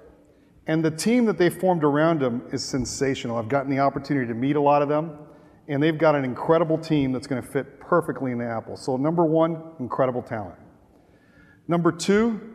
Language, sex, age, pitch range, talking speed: English, male, 40-59, 130-160 Hz, 190 wpm